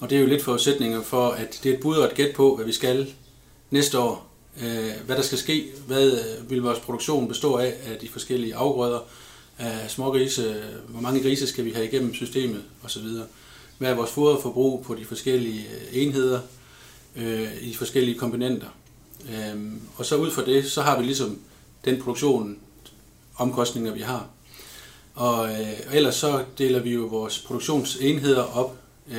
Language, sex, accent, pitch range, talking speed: Danish, male, native, 115-130 Hz, 165 wpm